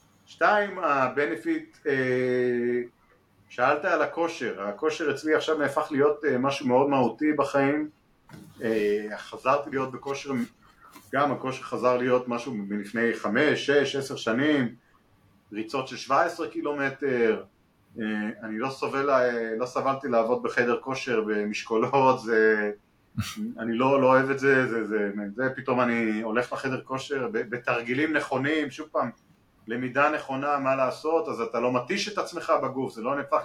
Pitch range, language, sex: 115-145 Hz, Hebrew, male